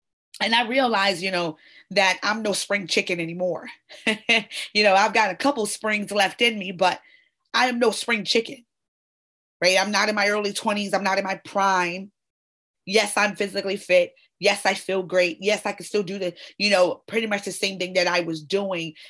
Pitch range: 180-215 Hz